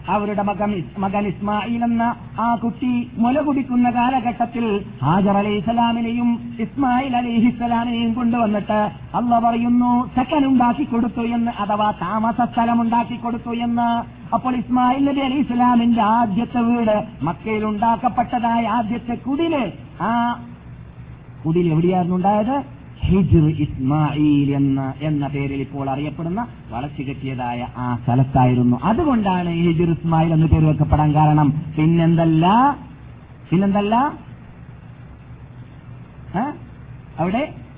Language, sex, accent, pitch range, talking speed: Malayalam, male, native, 160-240 Hz, 90 wpm